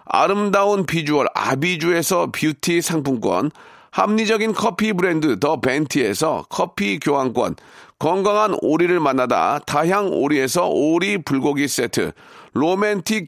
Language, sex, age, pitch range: Korean, male, 40-59, 165-220 Hz